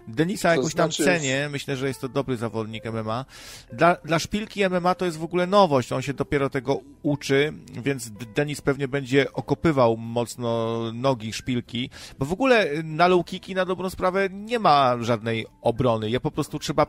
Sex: male